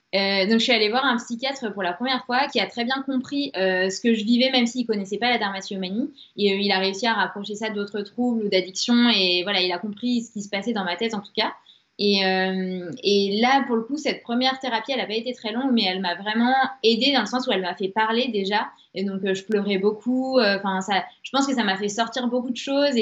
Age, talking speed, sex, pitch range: 20-39, 265 wpm, female, 195-235 Hz